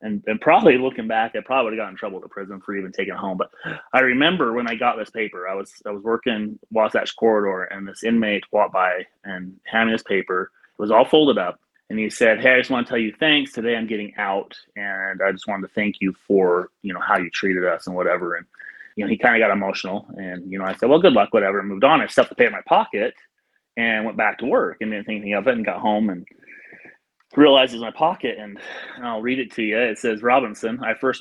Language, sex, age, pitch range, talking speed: English, male, 30-49, 100-115 Hz, 260 wpm